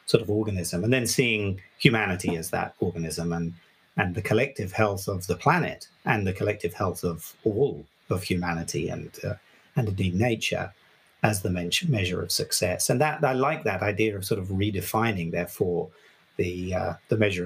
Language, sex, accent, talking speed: English, male, British, 180 wpm